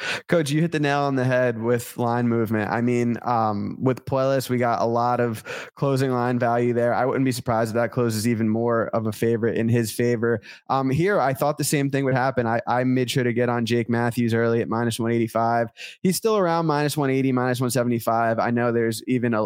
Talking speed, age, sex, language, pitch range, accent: 225 wpm, 20-39, male, English, 115-135 Hz, American